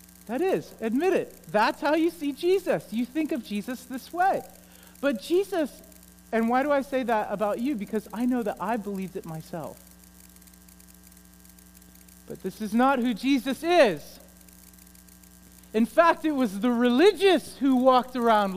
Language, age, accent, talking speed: English, 50-69, American, 160 wpm